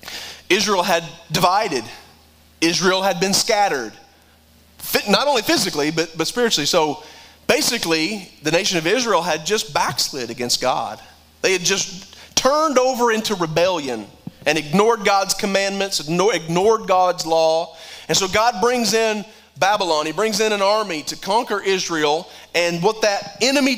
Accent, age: American, 30-49